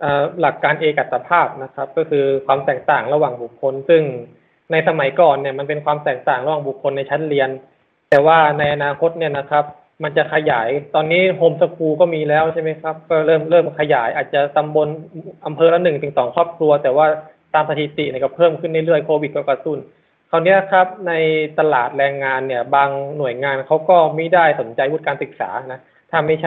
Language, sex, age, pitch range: Thai, male, 20-39, 145-170 Hz